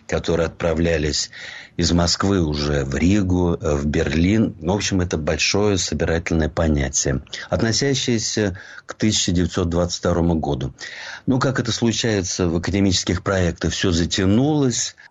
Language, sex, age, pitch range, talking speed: Russian, male, 50-69, 85-105 Hz, 110 wpm